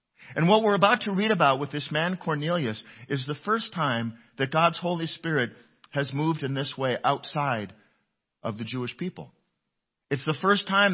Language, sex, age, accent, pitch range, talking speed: English, male, 50-69, American, 130-175 Hz, 180 wpm